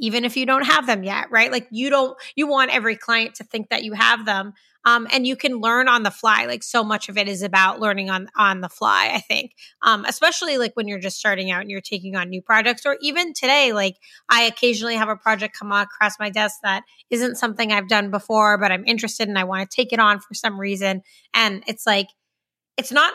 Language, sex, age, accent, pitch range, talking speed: English, female, 30-49, American, 205-245 Hz, 245 wpm